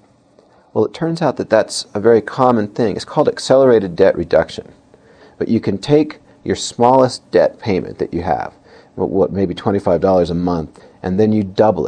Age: 40-59